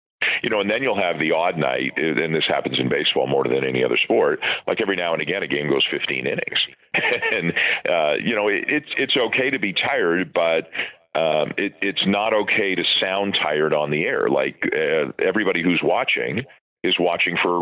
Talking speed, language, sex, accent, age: 210 wpm, English, male, American, 40-59